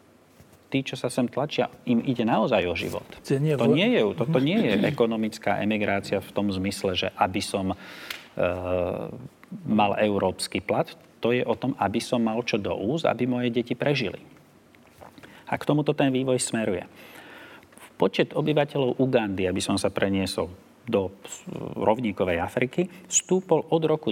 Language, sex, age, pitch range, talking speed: Slovak, male, 40-59, 105-130 Hz, 155 wpm